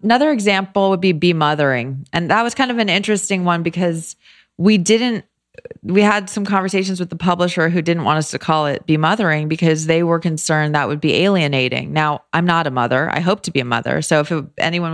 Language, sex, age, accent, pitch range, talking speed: English, female, 30-49, American, 150-190 Hz, 220 wpm